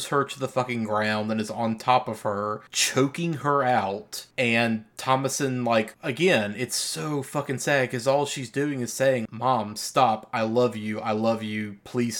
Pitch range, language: 110-125 Hz, English